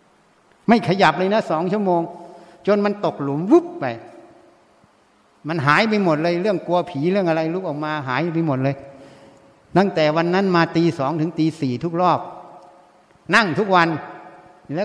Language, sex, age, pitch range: Thai, male, 60-79, 155-200 Hz